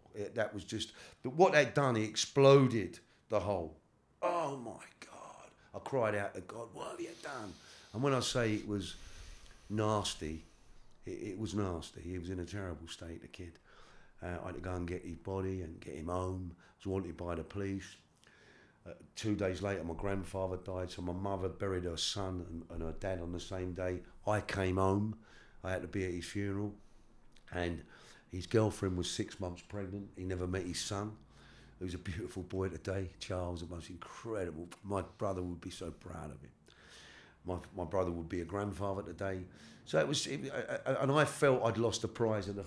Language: English